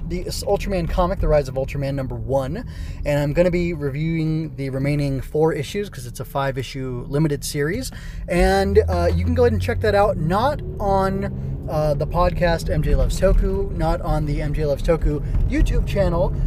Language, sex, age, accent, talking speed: English, male, 20-39, American, 185 wpm